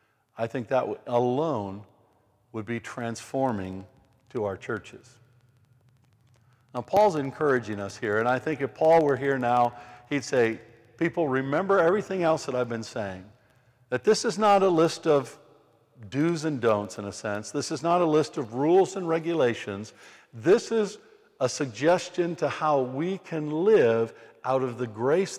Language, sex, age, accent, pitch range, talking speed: English, male, 50-69, American, 120-170 Hz, 160 wpm